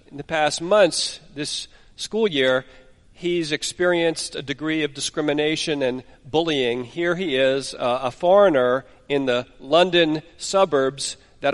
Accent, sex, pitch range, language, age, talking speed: American, male, 130-160 Hz, English, 50-69, 135 wpm